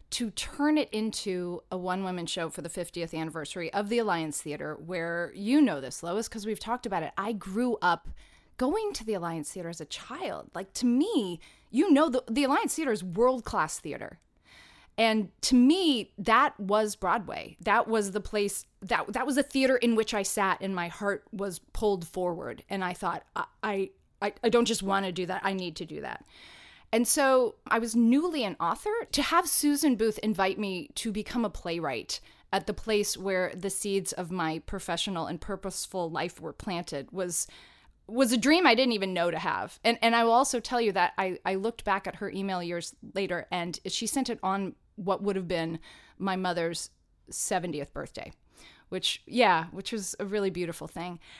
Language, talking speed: English, 200 wpm